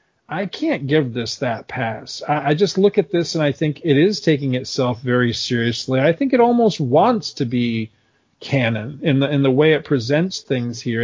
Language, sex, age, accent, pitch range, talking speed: English, male, 40-59, American, 125-170 Hz, 205 wpm